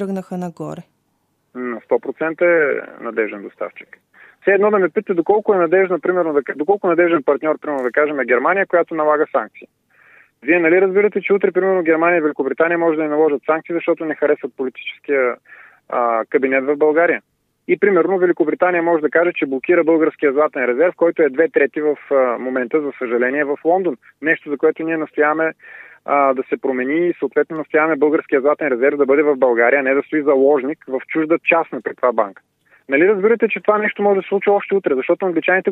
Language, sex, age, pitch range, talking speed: Bulgarian, male, 20-39, 150-185 Hz, 190 wpm